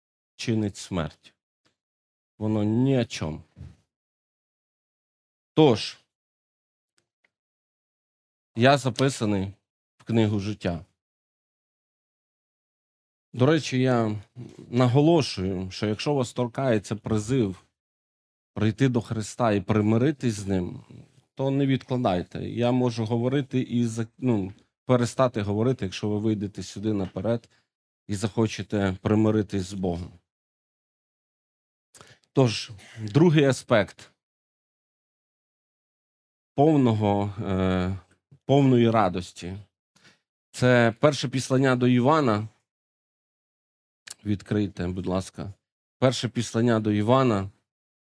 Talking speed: 85 wpm